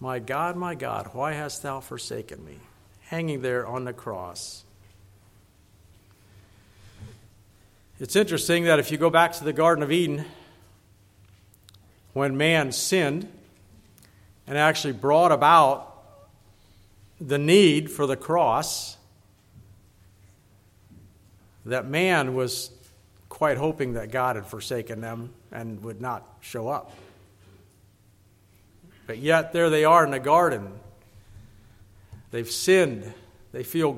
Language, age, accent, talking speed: English, 50-69, American, 115 wpm